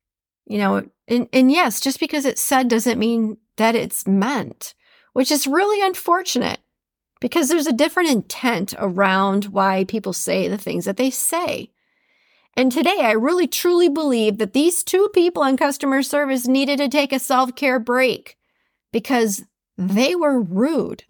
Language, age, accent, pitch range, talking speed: English, 40-59, American, 200-275 Hz, 155 wpm